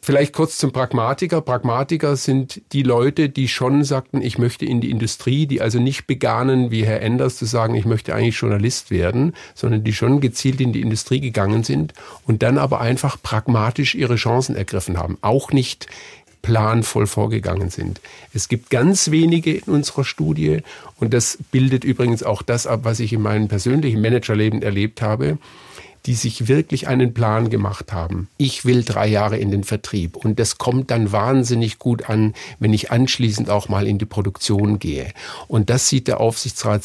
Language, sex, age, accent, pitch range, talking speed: German, male, 50-69, German, 105-130 Hz, 180 wpm